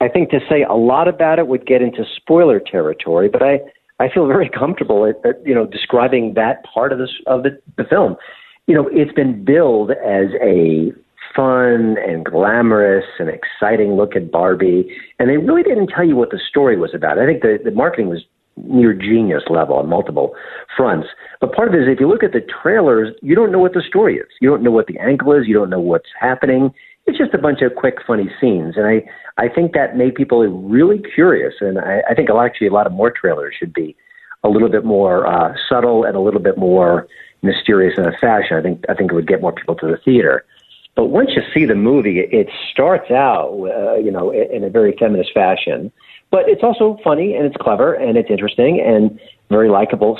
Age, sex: 50-69, male